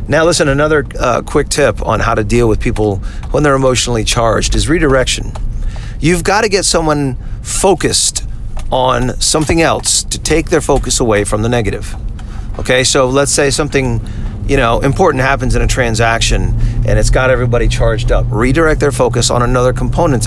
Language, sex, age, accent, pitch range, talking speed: English, male, 40-59, American, 110-140 Hz, 175 wpm